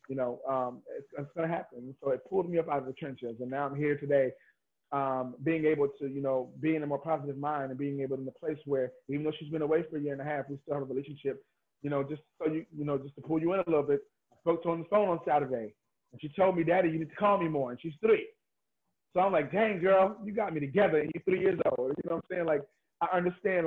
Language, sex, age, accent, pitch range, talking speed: English, male, 30-49, American, 135-165 Hz, 300 wpm